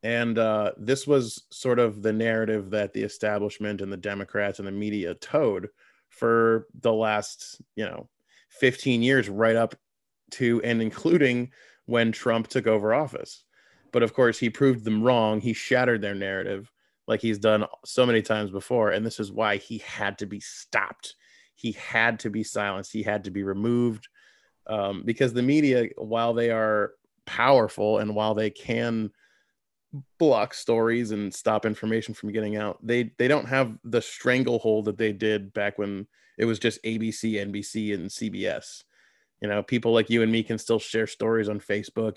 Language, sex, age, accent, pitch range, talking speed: English, male, 20-39, American, 105-120 Hz, 175 wpm